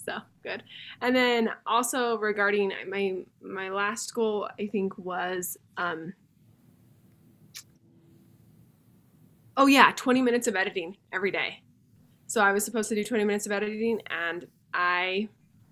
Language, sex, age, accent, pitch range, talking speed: English, female, 20-39, American, 185-230 Hz, 130 wpm